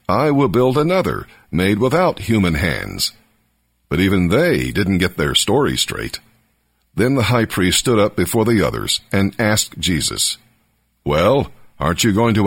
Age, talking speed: 60-79, 160 wpm